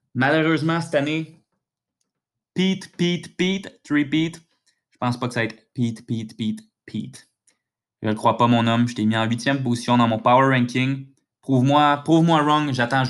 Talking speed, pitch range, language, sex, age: 190 wpm, 120-155 Hz, French, male, 20-39